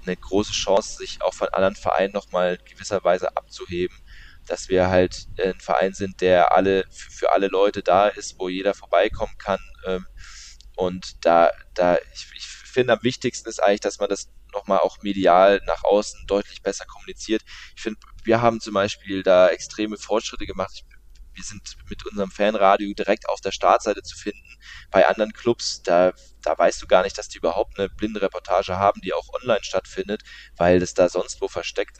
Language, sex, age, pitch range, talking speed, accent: German, male, 20-39, 90-105 Hz, 185 wpm, German